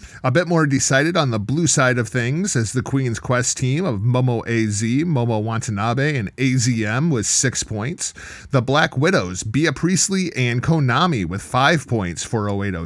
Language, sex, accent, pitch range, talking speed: English, male, American, 110-150 Hz, 175 wpm